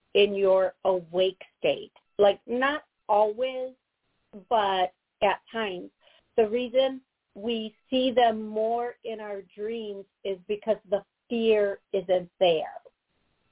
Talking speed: 110 wpm